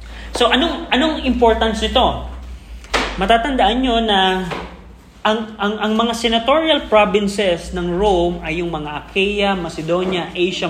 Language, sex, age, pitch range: Filipino, male, 20-39, 170-205 Hz